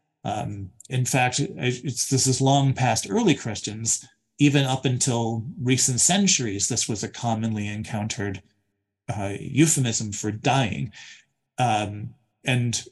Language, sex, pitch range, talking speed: English, male, 110-145 Hz, 110 wpm